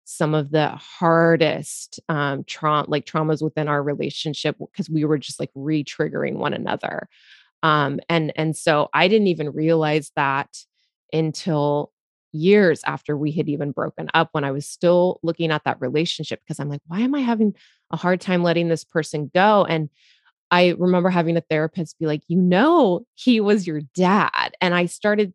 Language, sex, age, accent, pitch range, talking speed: English, female, 20-39, American, 160-210 Hz, 180 wpm